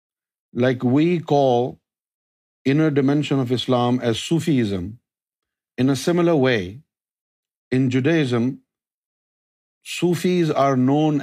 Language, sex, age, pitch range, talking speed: Urdu, male, 50-69, 120-165 Hz, 95 wpm